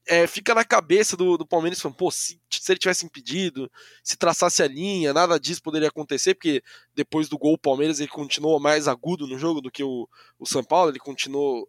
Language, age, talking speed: Portuguese, 20-39, 215 wpm